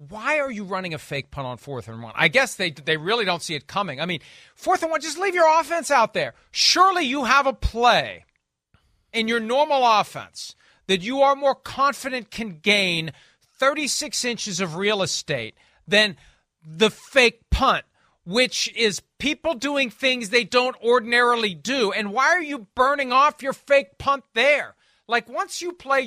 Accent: American